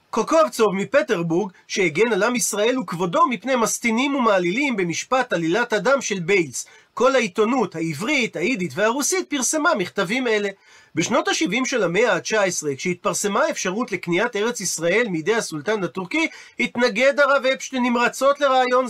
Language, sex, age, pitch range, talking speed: Hebrew, male, 40-59, 200-270 Hz, 130 wpm